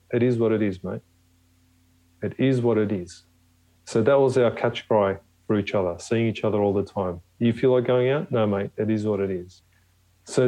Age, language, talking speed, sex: 40-59, English, 225 wpm, male